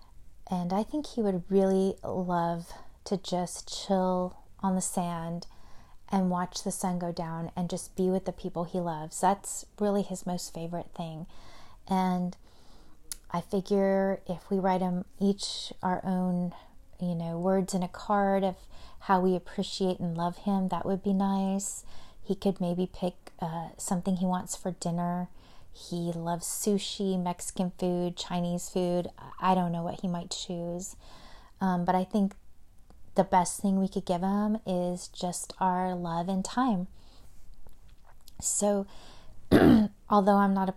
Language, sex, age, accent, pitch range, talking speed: English, female, 30-49, American, 180-200 Hz, 155 wpm